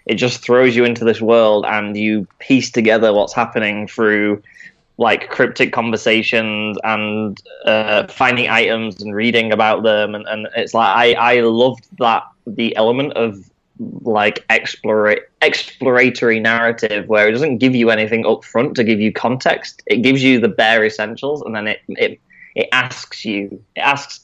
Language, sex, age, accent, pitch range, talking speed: English, male, 10-29, British, 105-120 Hz, 165 wpm